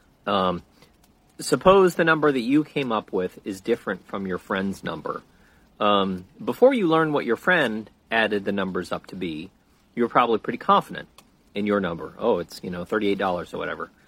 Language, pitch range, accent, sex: English, 105-155 Hz, American, male